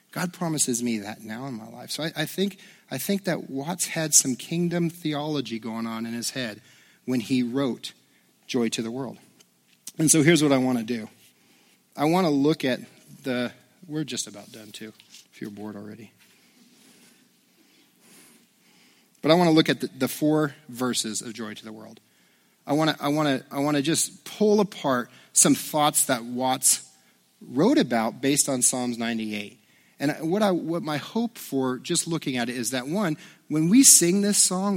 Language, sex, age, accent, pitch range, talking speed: English, male, 40-59, American, 120-165 Hz, 185 wpm